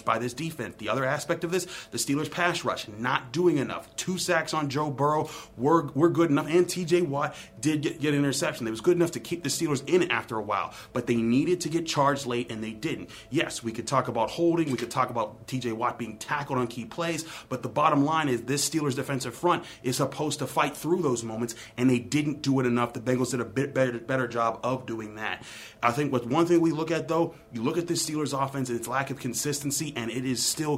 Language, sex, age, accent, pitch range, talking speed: English, male, 30-49, American, 125-155 Hz, 250 wpm